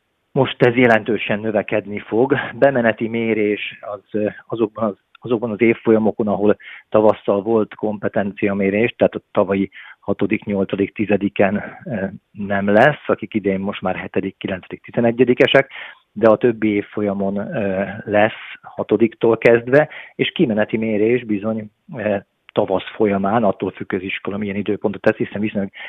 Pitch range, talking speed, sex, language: 100-110 Hz, 115 wpm, male, Hungarian